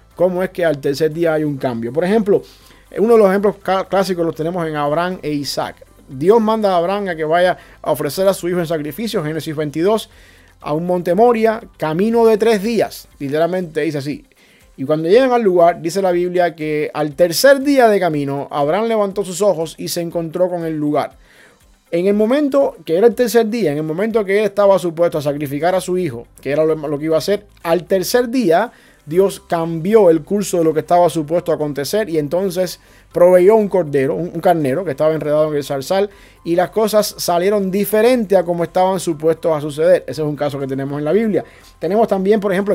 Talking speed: 215 wpm